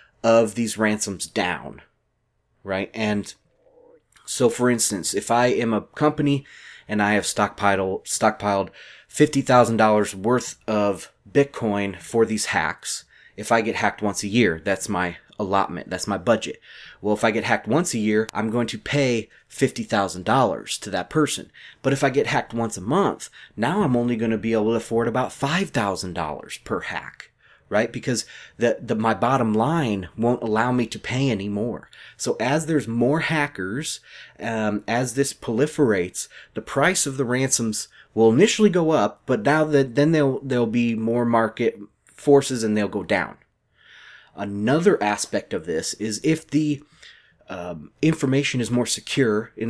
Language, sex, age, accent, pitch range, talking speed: English, male, 30-49, American, 105-135 Hz, 170 wpm